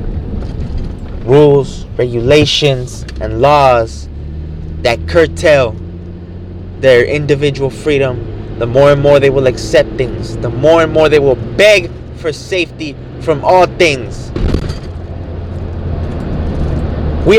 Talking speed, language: 105 wpm, English